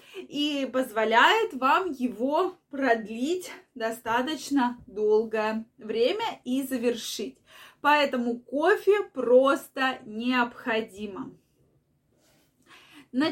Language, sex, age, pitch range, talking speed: Russian, female, 20-39, 240-310 Hz, 70 wpm